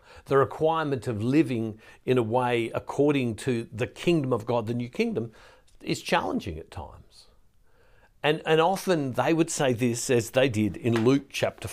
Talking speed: 170 wpm